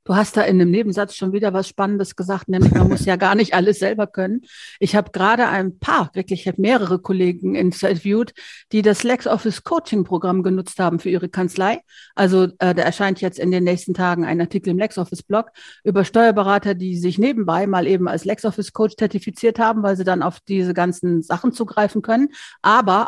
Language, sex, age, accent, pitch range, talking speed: German, female, 50-69, German, 175-200 Hz, 200 wpm